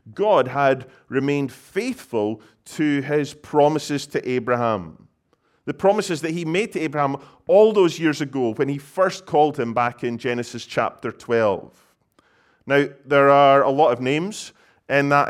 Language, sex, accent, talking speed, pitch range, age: English, male, British, 155 wpm, 120-150 Hz, 30-49